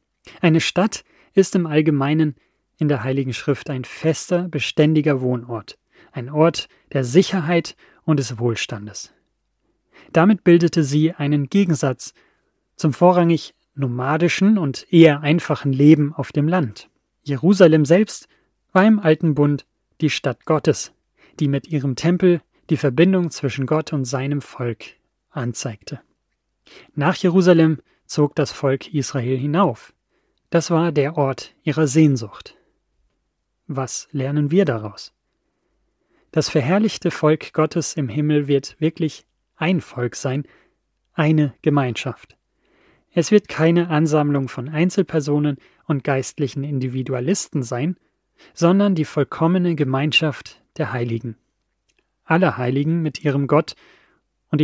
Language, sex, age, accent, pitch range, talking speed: German, male, 30-49, German, 135-165 Hz, 120 wpm